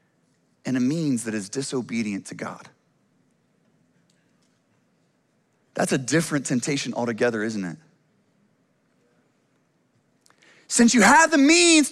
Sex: male